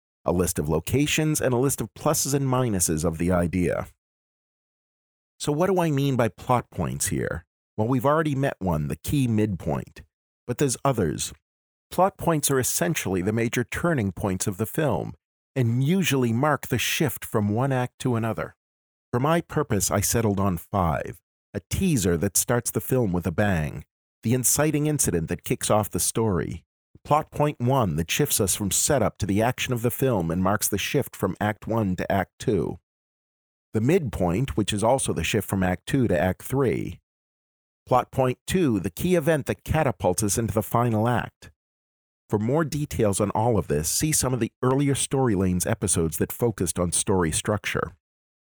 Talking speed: 185 wpm